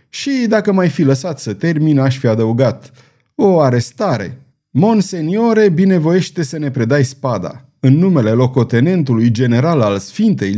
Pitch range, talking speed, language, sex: 120-175 Hz, 135 wpm, Romanian, male